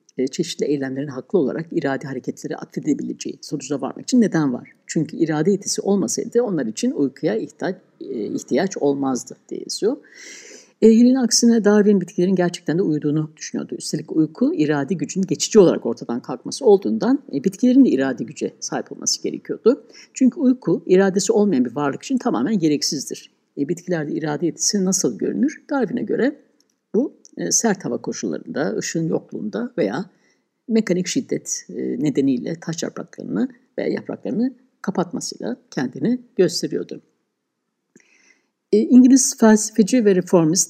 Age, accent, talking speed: 60-79, native, 125 wpm